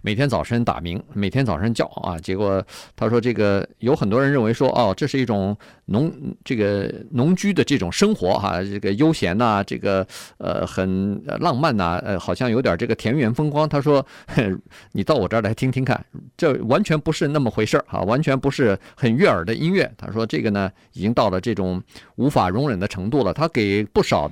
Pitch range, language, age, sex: 100-145 Hz, Chinese, 50-69, male